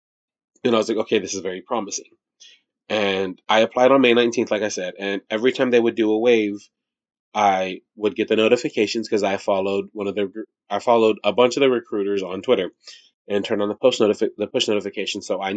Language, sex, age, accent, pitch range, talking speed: English, male, 20-39, American, 100-115 Hz, 220 wpm